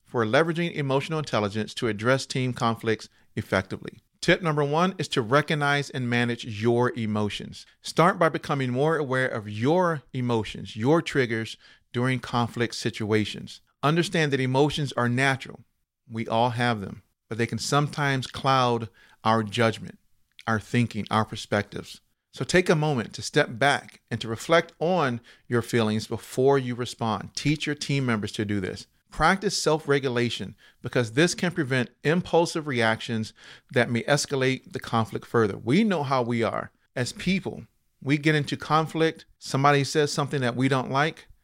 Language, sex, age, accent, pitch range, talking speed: English, male, 40-59, American, 110-145 Hz, 155 wpm